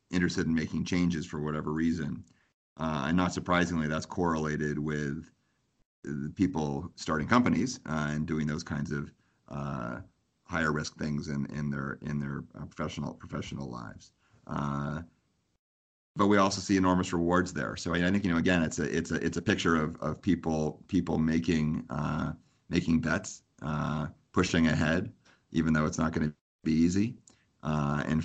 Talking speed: 165 wpm